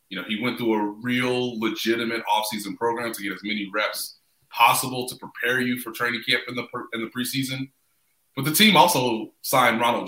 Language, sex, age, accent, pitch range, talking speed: English, male, 30-49, American, 110-135 Hz, 200 wpm